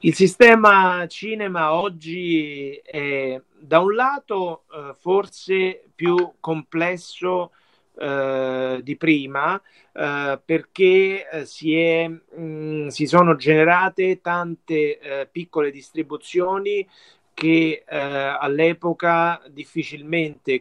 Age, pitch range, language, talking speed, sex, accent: 30-49, 140-170 Hz, Italian, 85 wpm, male, native